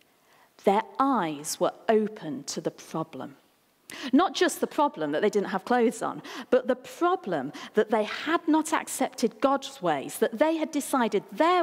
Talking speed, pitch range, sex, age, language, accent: 165 wpm, 205-295 Hz, female, 40-59, English, British